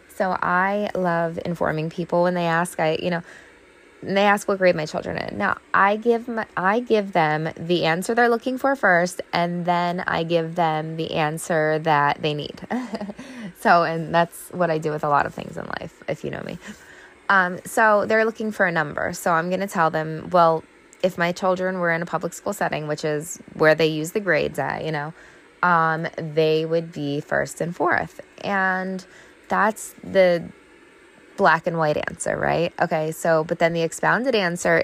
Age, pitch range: 20-39, 160-195 Hz